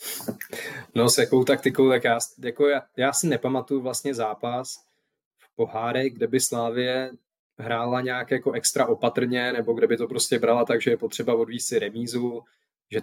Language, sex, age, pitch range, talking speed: Czech, male, 20-39, 115-135 Hz, 170 wpm